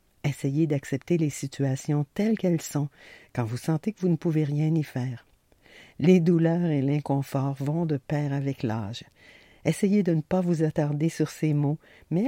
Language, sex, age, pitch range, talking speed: French, female, 50-69, 140-175 Hz, 175 wpm